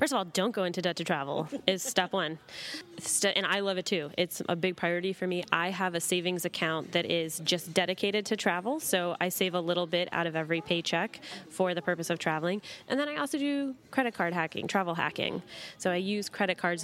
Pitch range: 170-205 Hz